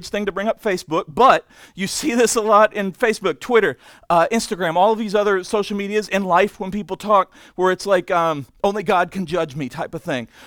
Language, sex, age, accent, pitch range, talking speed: English, male, 40-59, American, 175-215 Hz, 225 wpm